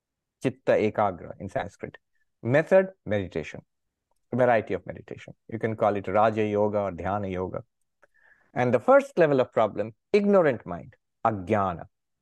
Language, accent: English, Indian